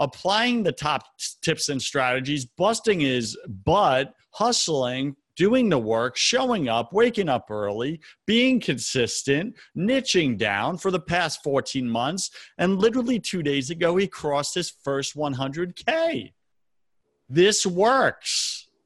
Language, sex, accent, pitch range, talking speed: English, male, American, 120-190 Hz, 125 wpm